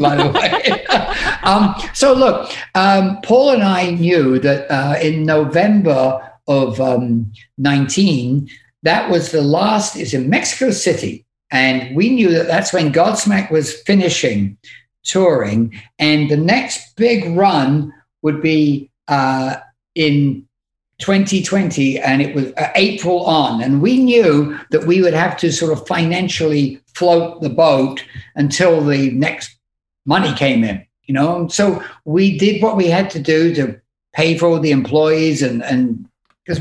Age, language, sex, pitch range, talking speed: 60-79, English, male, 140-195 Hz, 145 wpm